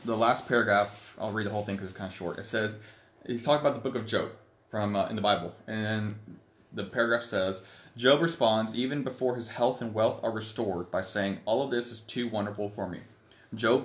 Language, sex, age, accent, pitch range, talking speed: English, male, 20-39, American, 100-120 Hz, 225 wpm